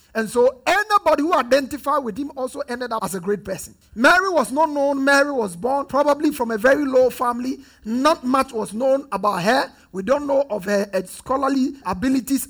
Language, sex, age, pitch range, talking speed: English, male, 50-69, 210-275 Hz, 190 wpm